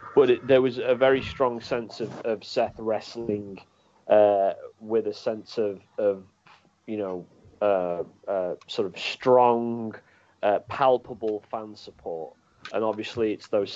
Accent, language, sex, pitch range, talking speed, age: British, English, male, 105-125 Hz, 145 wpm, 30-49